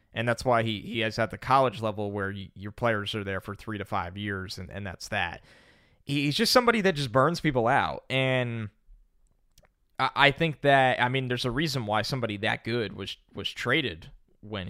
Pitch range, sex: 110-155 Hz, male